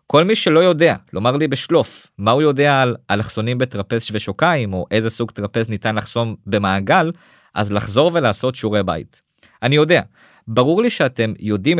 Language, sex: Hebrew, male